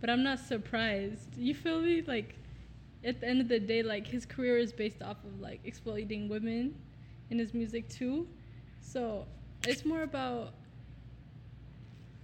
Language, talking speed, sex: English, 155 wpm, female